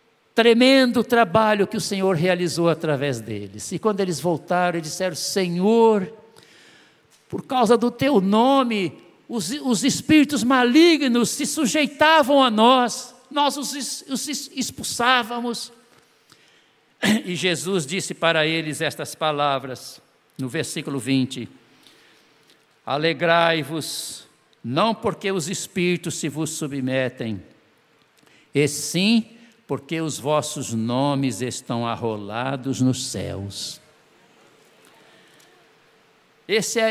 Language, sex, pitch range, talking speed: Portuguese, male, 145-220 Hz, 100 wpm